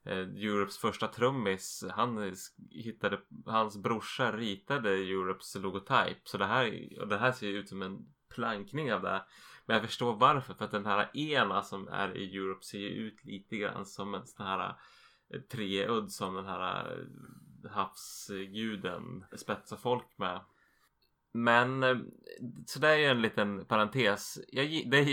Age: 20-39